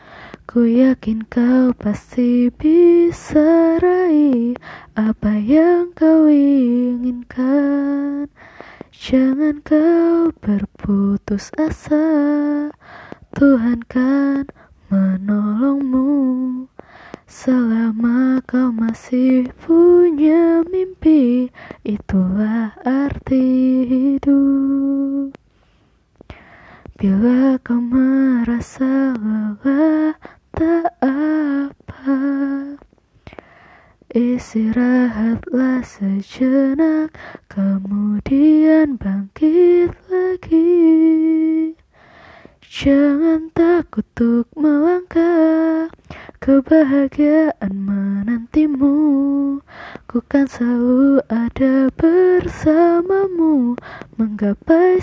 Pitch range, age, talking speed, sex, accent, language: 245-310 Hz, 20-39, 50 wpm, female, native, Indonesian